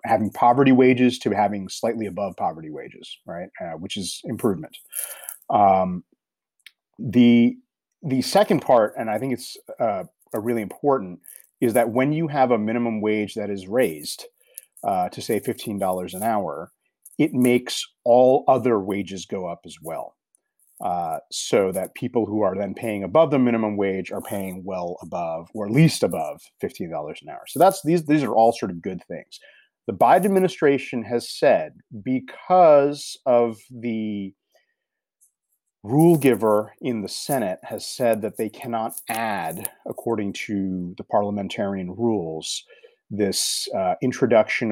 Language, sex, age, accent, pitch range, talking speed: English, male, 30-49, American, 100-135 Hz, 150 wpm